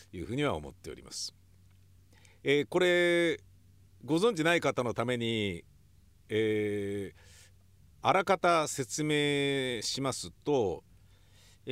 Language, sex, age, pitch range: Japanese, male, 50-69, 95-145 Hz